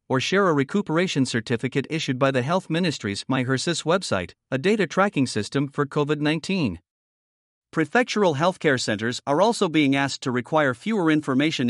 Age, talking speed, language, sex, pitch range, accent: 50-69, 150 wpm, English, male, 130-170 Hz, American